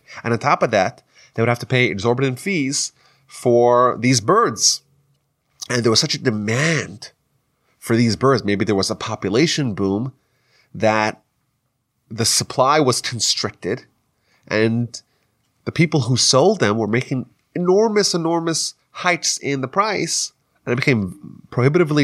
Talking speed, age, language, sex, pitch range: 145 wpm, 30-49, English, male, 115-150 Hz